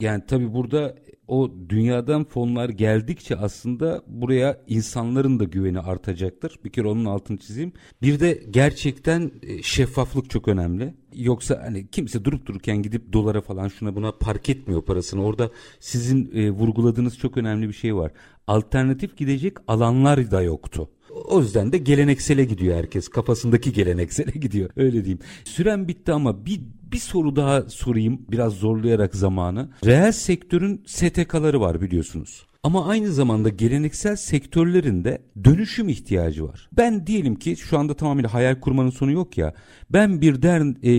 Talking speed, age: 150 wpm, 50-69